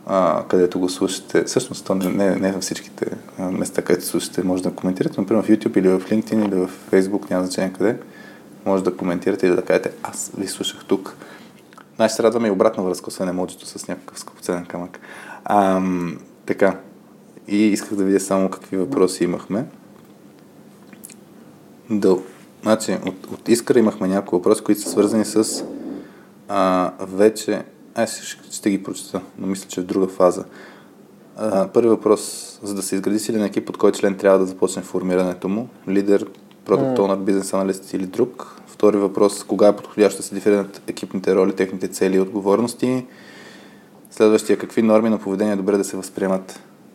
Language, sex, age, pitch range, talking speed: Bulgarian, male, 20-39, 95-105 Hz, 170 wpm